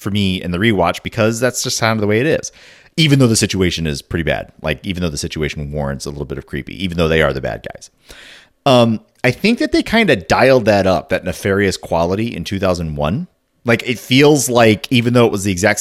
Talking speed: 245 wpm